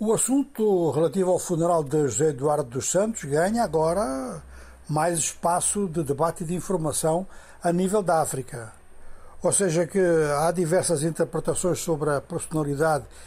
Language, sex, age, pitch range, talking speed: Portuguese, male, 60-79, 150-200 Hz, 145 wpm